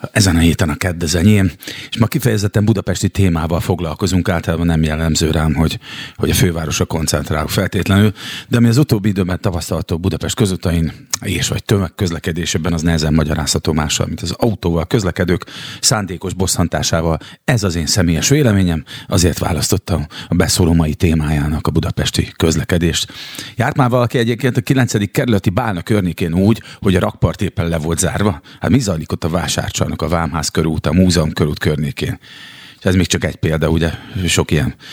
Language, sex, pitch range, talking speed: Hungarian, male, 85-110 Hz, 160 wpm